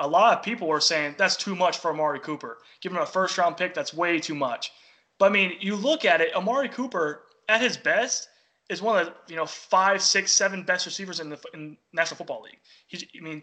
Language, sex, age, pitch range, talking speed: English, male, 20-39, 165-220 Hz, 220 wpm